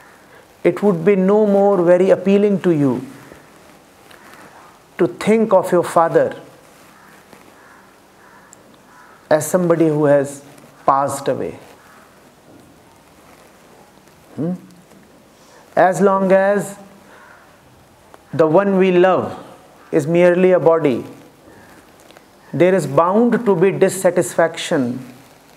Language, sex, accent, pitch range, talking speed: English, male, Indian, 165-200 Hz, 90 wpm